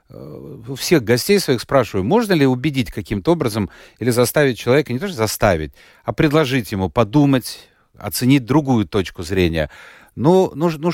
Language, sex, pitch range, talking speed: Russian, male, 100-135 Hz, 150 wpm